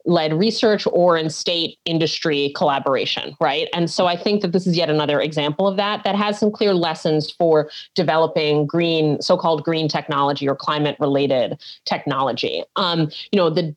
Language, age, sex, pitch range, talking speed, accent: English, 30-49, female, 150-185 Hz, 170 wpm, American